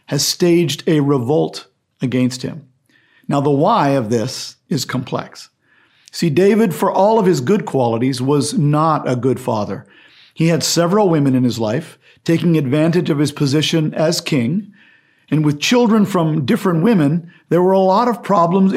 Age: 50-69